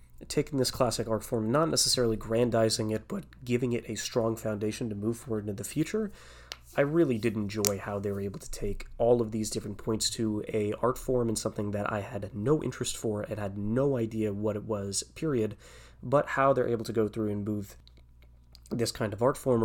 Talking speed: 215 wpm